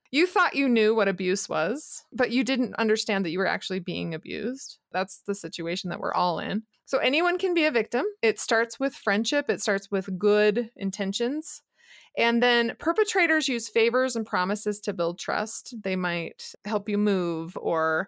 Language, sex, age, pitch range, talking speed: English, female, 20-39, 200-260 Hz, 185 wpm